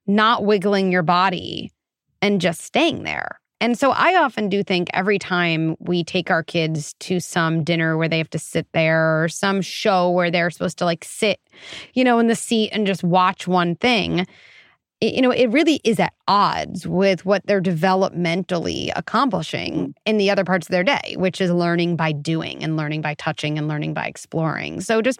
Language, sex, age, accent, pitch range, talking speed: English, female, 30-49, American, 170-215 Hz, 195 wpm